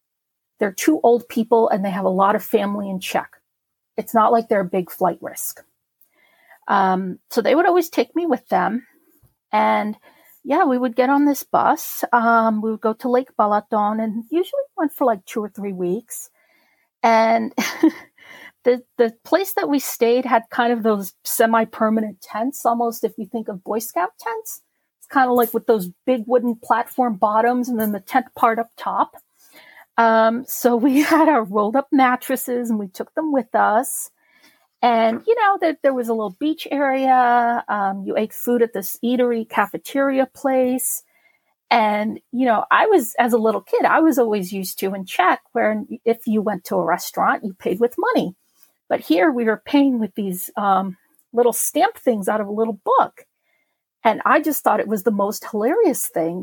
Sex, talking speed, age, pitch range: female, 190 wpm, 40-59, 215-260 Hz